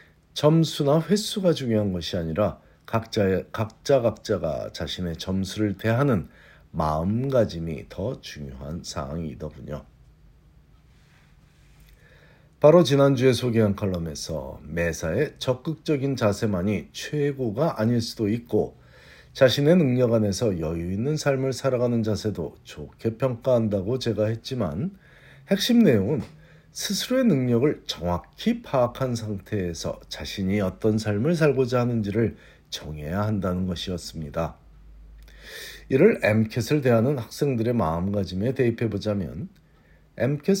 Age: 50-69